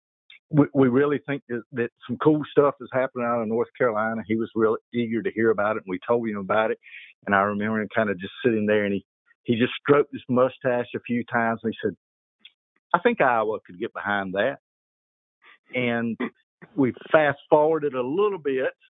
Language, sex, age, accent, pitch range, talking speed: English, male, 50-69, American, 105-130 Hz, 205 wpm